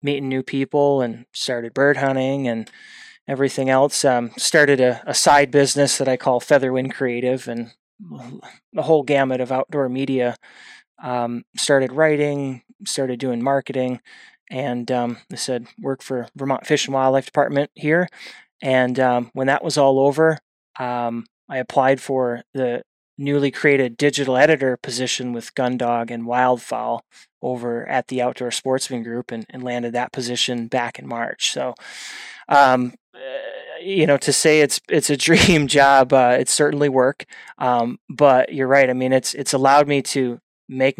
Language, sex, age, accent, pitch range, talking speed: English, male, 20-39, American, 125-140 Hz, 160 wpm